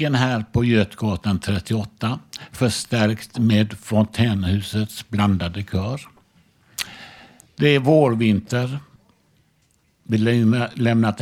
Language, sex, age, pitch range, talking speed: Swedish, male, 60-79, 105-130 Hz, 75 wpm